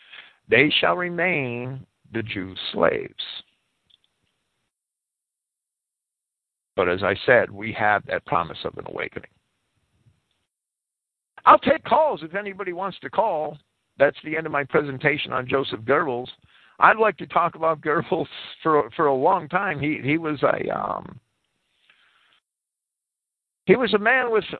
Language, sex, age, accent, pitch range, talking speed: English, male, 50-69, American, 130-185 Hz, 135 wpm